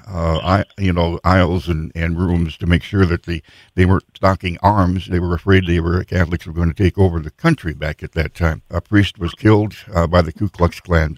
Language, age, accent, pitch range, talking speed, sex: English, 60-79, American, 85-95 Hz, 235 wpm, male